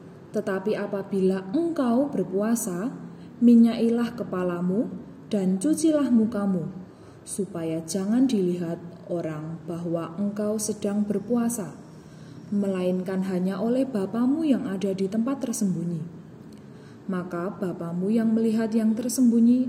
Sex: female